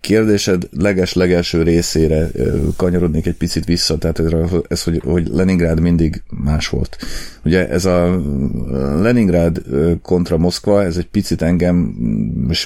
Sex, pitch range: male, 80-90 Hz